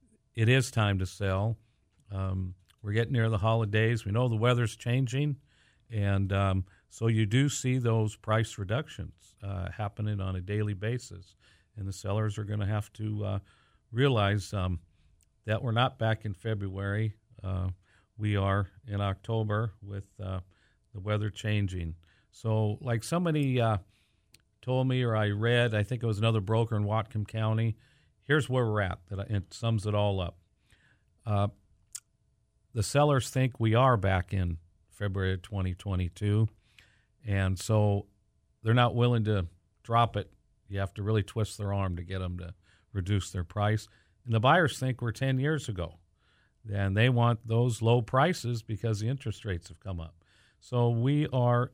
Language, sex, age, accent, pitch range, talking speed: English, male, 50-69, American, 100-120 Hz, 165 wpm